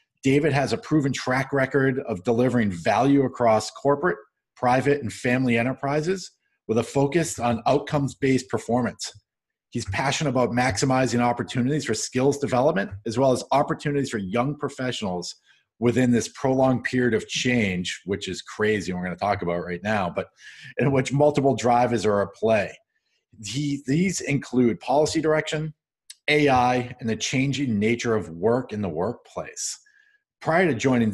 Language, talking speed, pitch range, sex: English, 150 wpm, 110-140 Hz, male